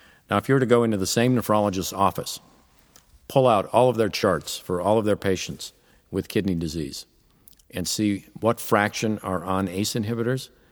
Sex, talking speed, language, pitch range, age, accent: male, 185 wpm, English, 90-110 Hz, 50-69, American